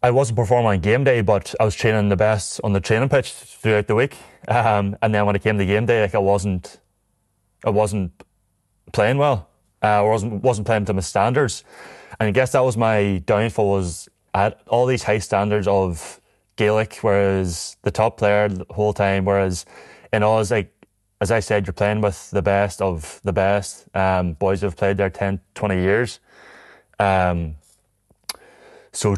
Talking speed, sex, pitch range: 185 wpm, male, 95-110 Hz